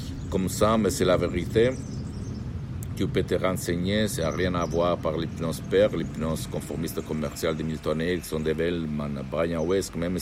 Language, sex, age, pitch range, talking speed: Italian, male, 60-79, 85-110 Hz, 170 wpm